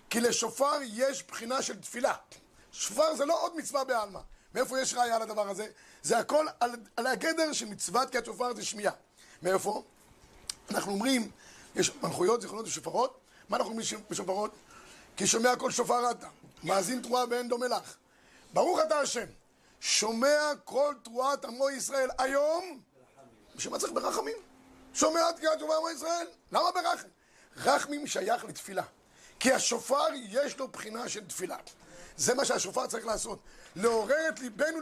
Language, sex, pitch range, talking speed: Hebrew, male, 230-290 Hz, 145 wpm